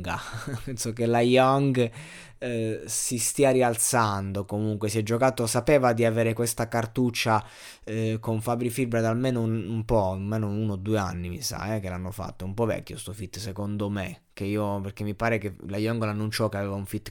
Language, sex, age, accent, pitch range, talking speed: Italian, male, 20-39, native, 100-120 Hz, 205 wpm